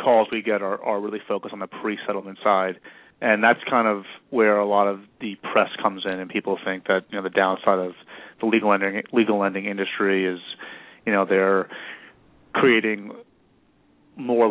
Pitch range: 95-110 Hz